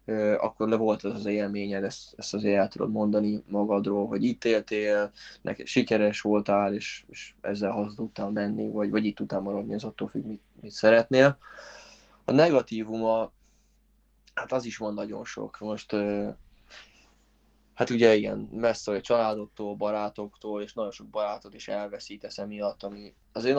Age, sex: 20-39, male